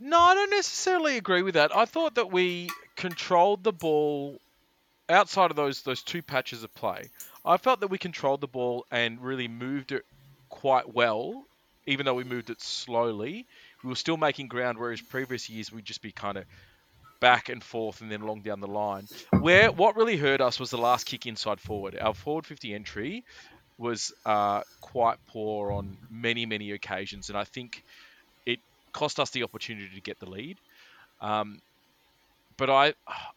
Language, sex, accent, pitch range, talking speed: English, male, Australian, 105-140 Hz, 180 wpm